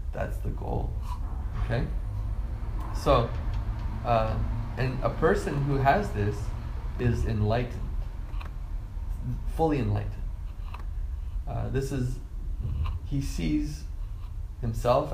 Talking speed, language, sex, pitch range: 85 wpm, English, male, 85-130 Hz